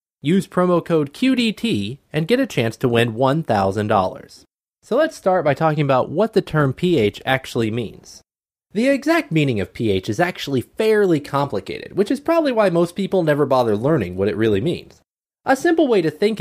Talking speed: 185 wpm